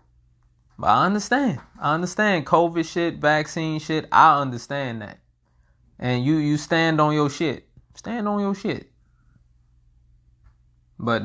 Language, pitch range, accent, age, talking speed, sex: English, 120-170 Hz, American, 20-39, 125 wpm, male